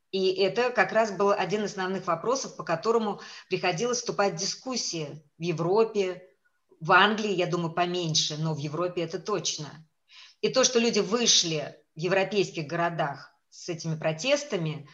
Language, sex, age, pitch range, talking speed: English, female, 20-39, 170-205 Hz, 155 wpm